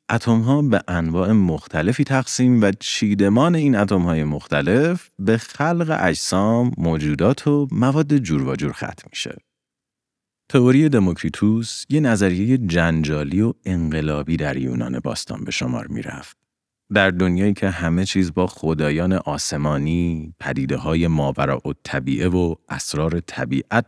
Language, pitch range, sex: Persian, 80-120 Hz, male